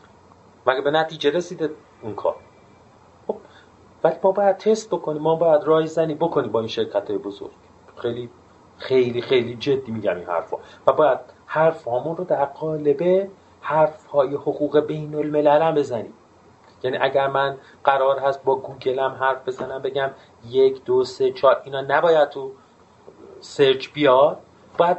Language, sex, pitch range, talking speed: Persian, male, 130-165 Hz, 145 wpm